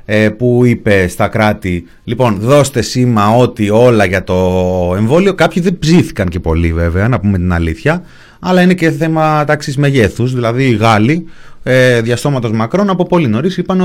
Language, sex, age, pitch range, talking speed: Greek, male, 30-49, 100-150 Hz, 160 wpm